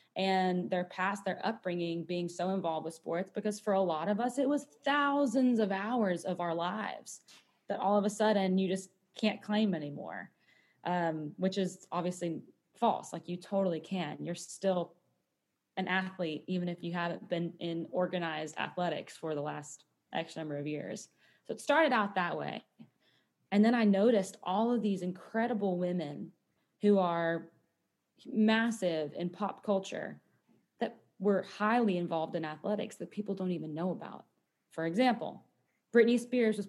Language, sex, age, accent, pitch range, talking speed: English, female, 20-39, American, 175-210 Hz, 165 wpm